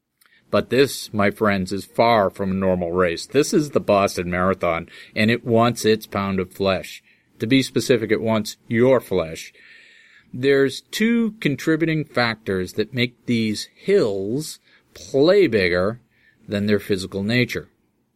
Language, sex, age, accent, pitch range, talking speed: English, male, 40-59, American, 105-145 Hz, 140 wpm